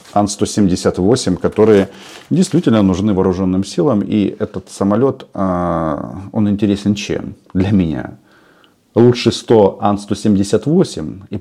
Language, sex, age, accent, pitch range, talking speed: Russian, male, 40-59, native, 90-110 Hz, 95 wpm